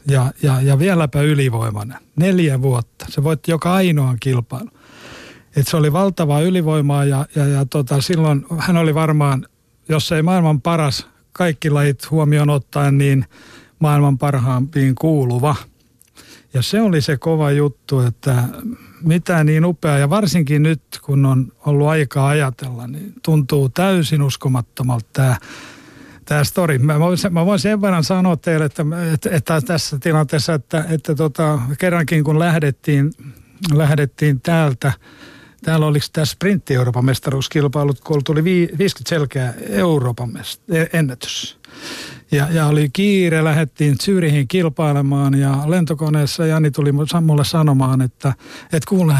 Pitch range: 140-170 Hz